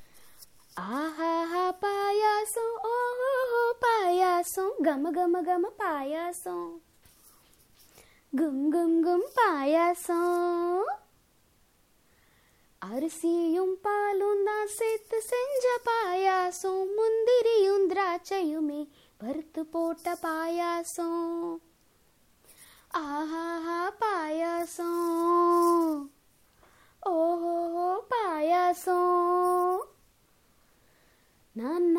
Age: 20-39